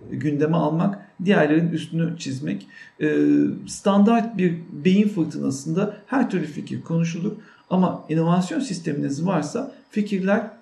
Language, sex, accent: Turkish, male, native